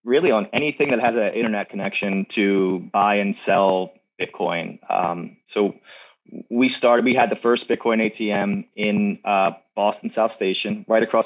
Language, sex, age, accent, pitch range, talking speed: English, male, 30-49, American, 95-115 Hz, 160 wpm